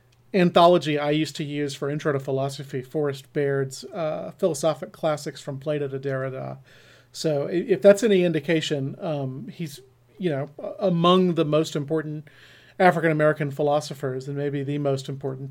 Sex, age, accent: male, 40-59, American